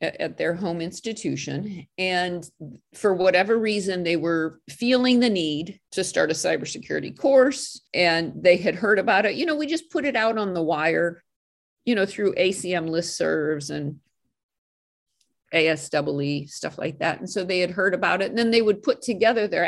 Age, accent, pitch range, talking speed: 50-69, American, 165-240 Hz, 175 wpm